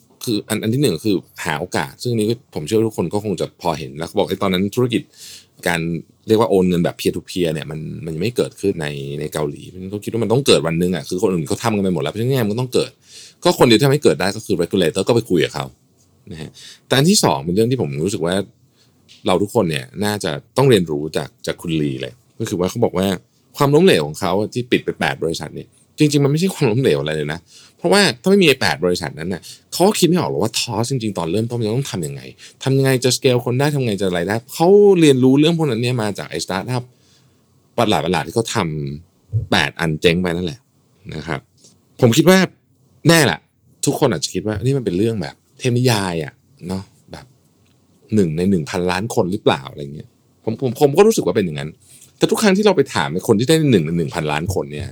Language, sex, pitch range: Thai, male, 95-135 Hz